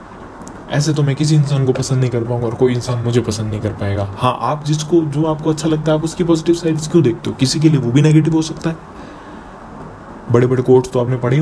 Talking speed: 250 wpm